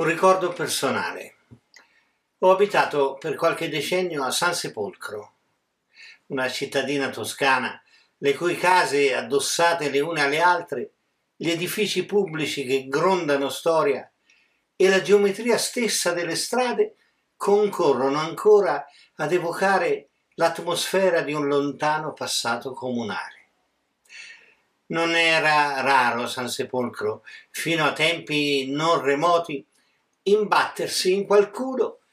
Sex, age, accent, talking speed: male, 50-69, native, 105 wpm